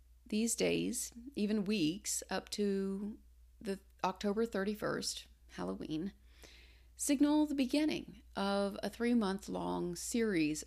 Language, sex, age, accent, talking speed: English, female, 40-59, American, 95 wpm